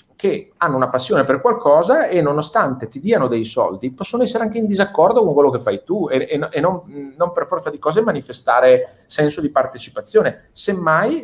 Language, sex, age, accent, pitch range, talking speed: Italian, male, 30-49, native, 120-200 Hz, 190 wpm